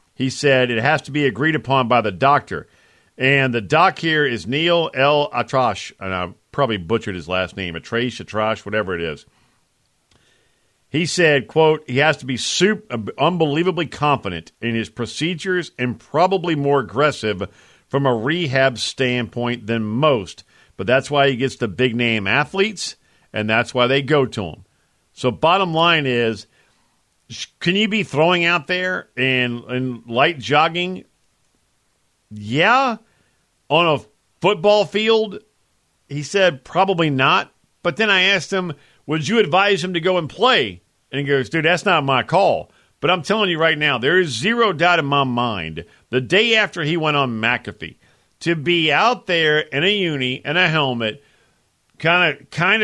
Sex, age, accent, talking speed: male, 50-69, American, 165 wpm